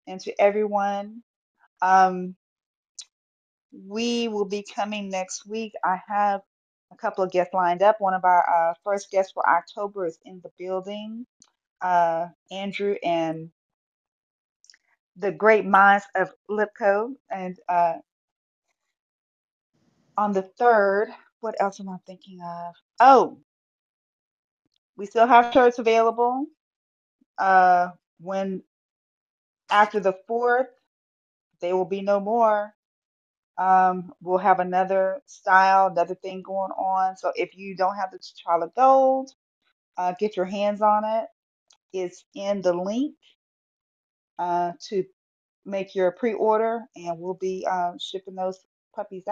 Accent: American